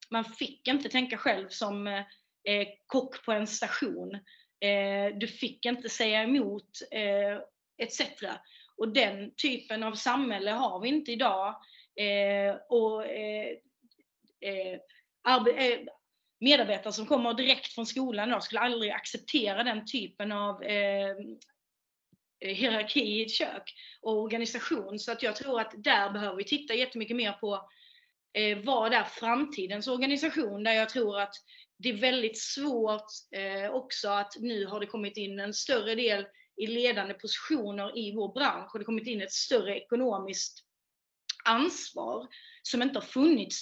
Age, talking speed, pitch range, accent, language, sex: 30-49, 130 wpm, 205-255 Hz, native, Swedish, female